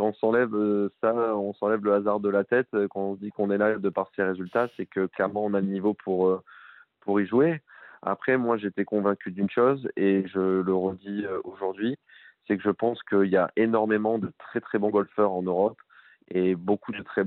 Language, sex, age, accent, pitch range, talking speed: French, male, 20-39, French, 95-105 Hz, 210 wpm